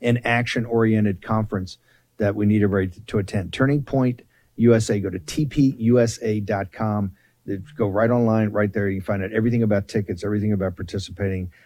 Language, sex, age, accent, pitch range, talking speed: English, male, 50-69, American, 100-120 Hz, 155 wpm